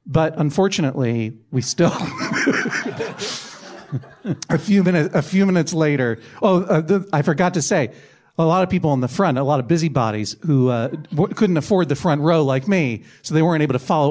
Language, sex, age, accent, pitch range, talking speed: English, male, 40-59, American, 140-195 Hz, 190 wpm